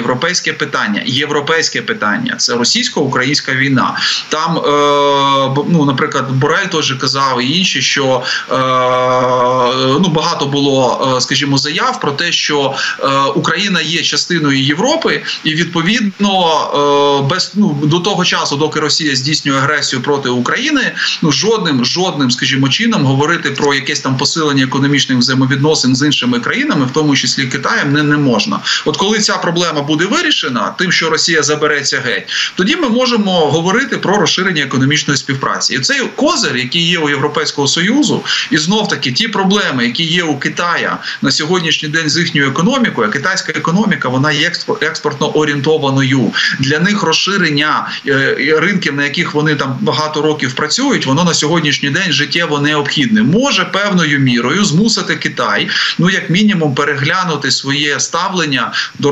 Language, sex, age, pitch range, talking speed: Ukrainian, male, 20-39, 140-175 Hz, 140 wpm